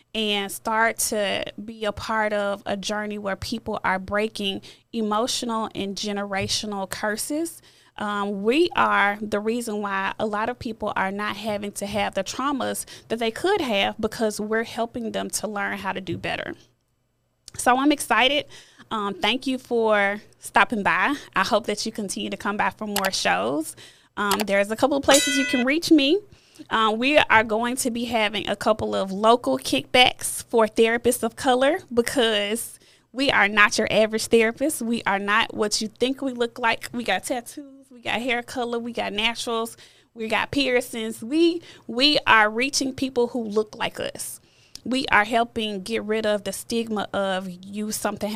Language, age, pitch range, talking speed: English, 20-39, 205-250 Hz, 175 wpm